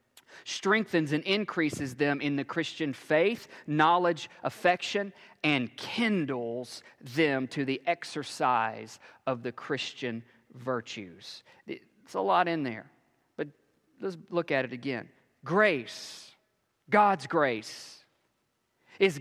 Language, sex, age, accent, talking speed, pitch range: English, male, 40-59, American, 110 wpm, 125-175 Hz